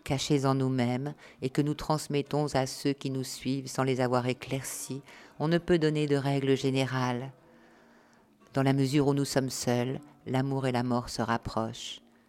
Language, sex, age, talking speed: French, female, 50-69, 175 wpm